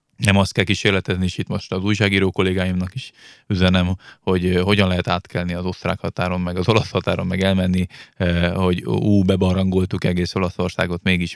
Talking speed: 165 wpm